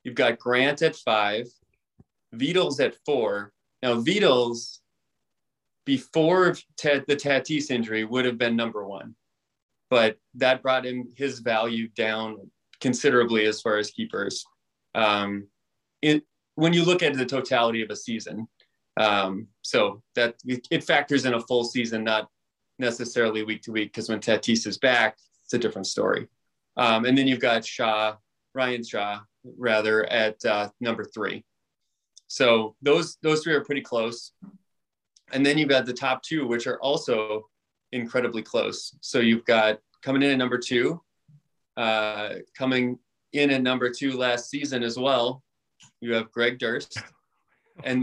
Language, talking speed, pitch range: English, 150 wpm, 110-135 Hz